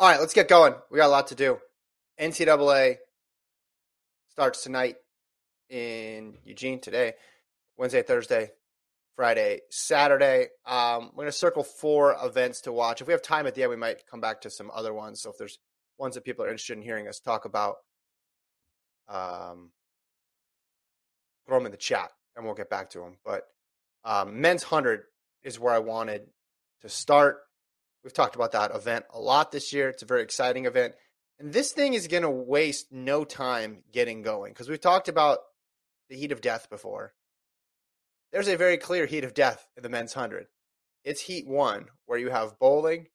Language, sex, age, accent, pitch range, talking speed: English, male, 30-49, American, 115-170 Hz, 185 wpm